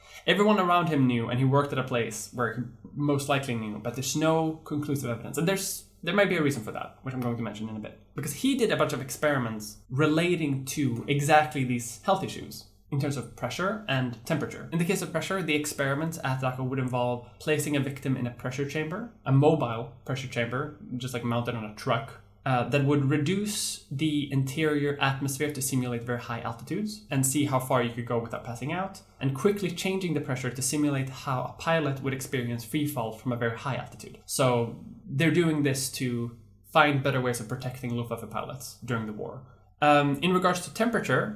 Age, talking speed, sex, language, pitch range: 10-29, 210 wpm, male, English, 120-150 Hz